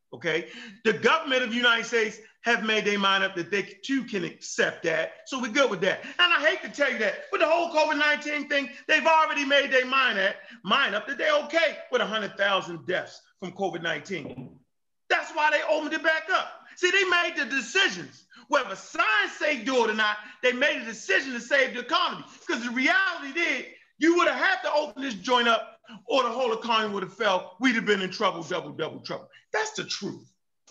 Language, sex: English, male